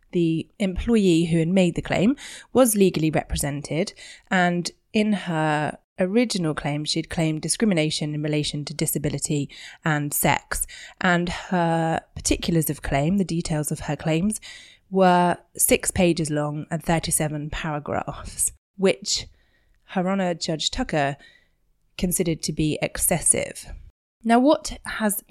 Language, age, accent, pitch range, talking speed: English, 20-39, British, 155-190 Hz, 125 wpm